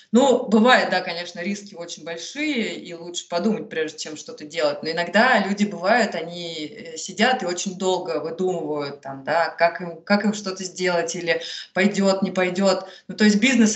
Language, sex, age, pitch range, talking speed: Russian, female, 20-39, 170-210 Hz, 175 wpm